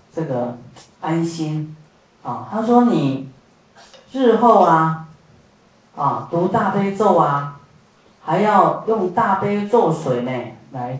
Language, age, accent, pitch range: Chinese, 40-59, native, 145-205 Hz